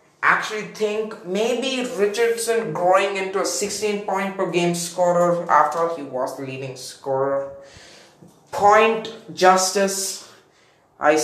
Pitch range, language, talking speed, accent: 165-205 Hz, English, 100 wpm, Indian